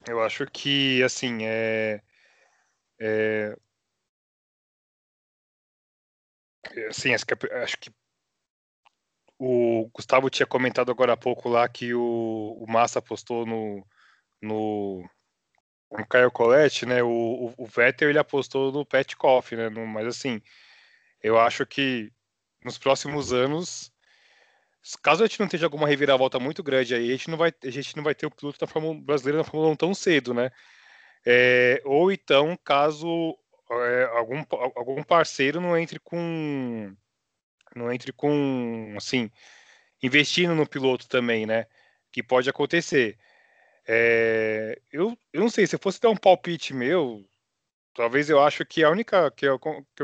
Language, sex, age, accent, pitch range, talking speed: Portuguese, male, 20-39, Brazilian, 115-150 Hz, 145 wpm